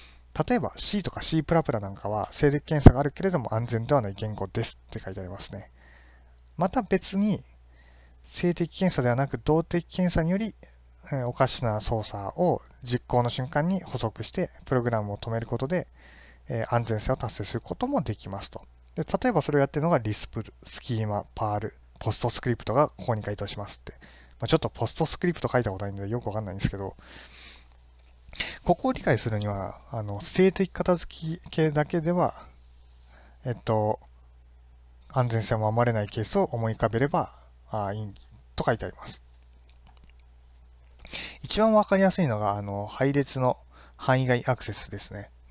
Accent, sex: native, male